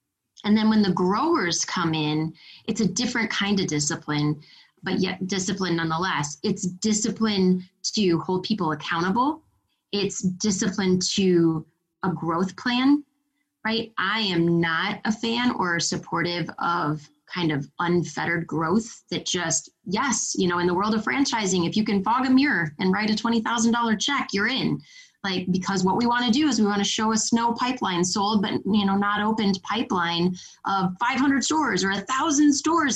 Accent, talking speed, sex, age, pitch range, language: American, 170 wpm, female, 30-49, 170-225 Hz, English